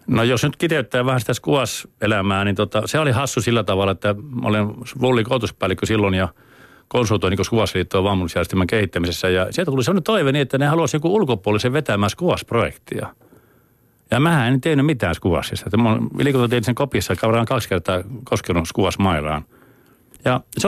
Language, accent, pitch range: Finnish, native, 95-125 Hz